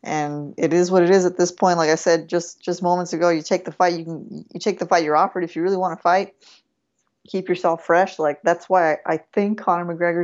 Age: 20-39